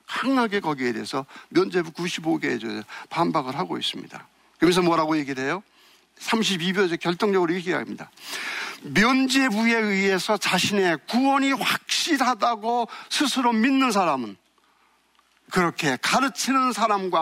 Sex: male